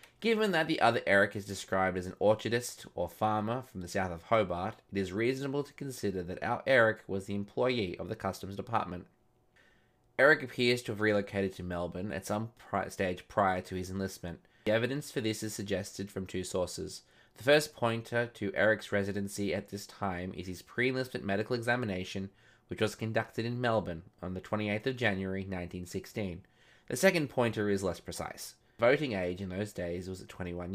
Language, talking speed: English, 185 wpm